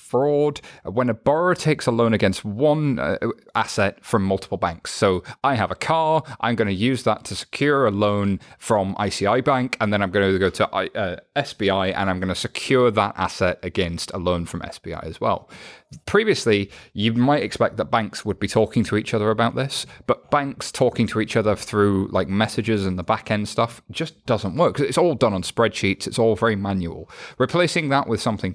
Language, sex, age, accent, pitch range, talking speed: English, male, 30-49, British, 100-130 Hz, 200 wpm